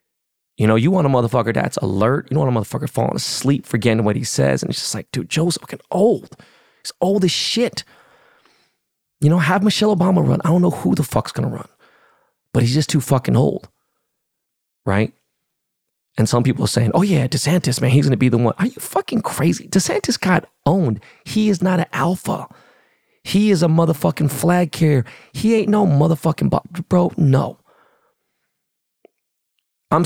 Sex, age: male, 30-49